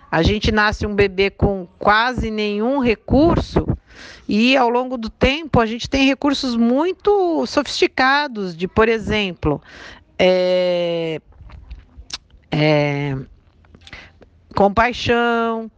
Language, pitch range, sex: Portuguese, 180-235 Hz, female